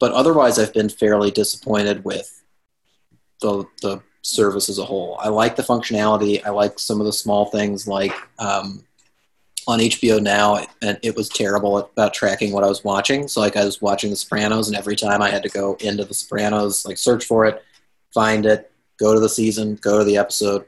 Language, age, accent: English, 30-49, American